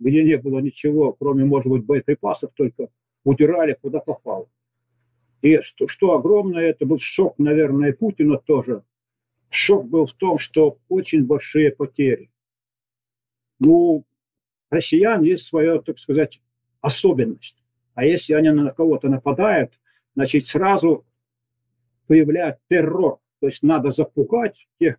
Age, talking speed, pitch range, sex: 50-69, 130 wpm, 125-160 Hz, male